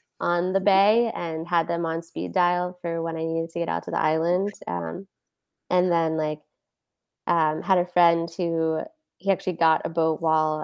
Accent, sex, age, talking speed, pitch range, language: American, female, 20-39, 190 wpm, 160-185 Hz, English